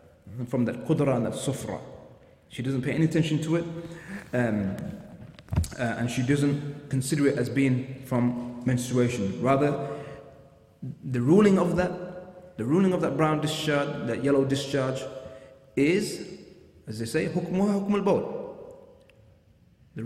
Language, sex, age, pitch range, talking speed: English, male, 30-49, 125-165 Hz, 140 wpm